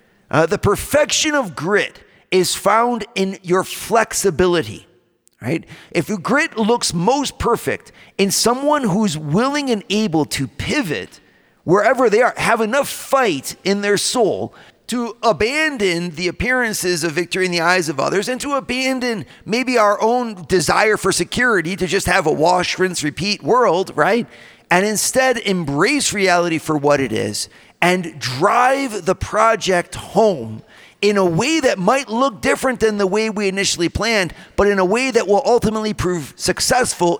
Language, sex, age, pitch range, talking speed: English, male, 40-59, 170-235 Hz, 155 wpm